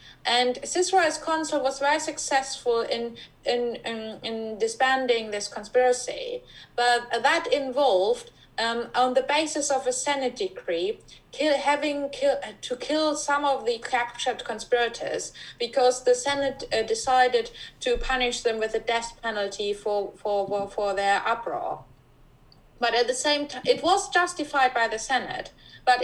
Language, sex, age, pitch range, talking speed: English, female, 30-49, 230-295 Hz, 145 wpm